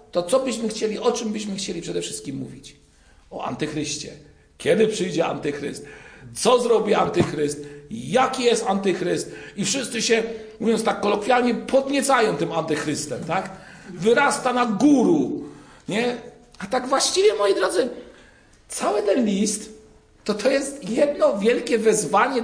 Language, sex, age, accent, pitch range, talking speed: Polish, male, 50-69, native, 165-235 Hz, 135 wpm